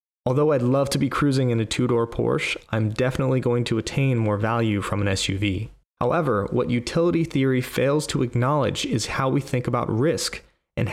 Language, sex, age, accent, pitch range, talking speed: English, male, 30-49, American, 115-145 Hz, 185 wpm